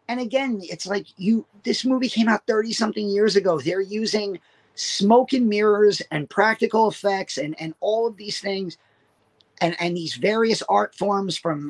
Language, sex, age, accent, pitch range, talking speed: English, male, 40-59, American, 175-215 Hz, 170 wpm